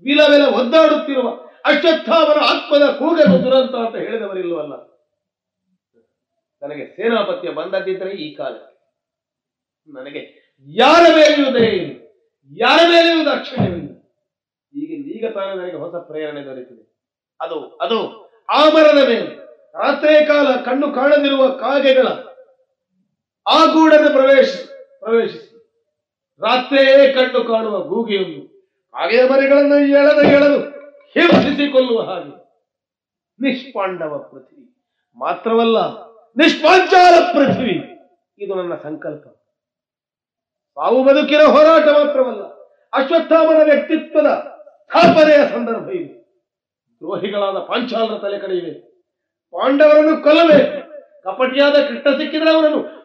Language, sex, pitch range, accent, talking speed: Kannada, male, 225-305 Hz, native, 85 wpm